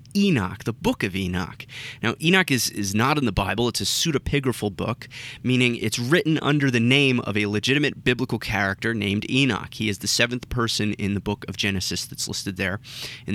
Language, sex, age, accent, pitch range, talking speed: English, male, 20-39, American, 100-130 Hz, 200 wpm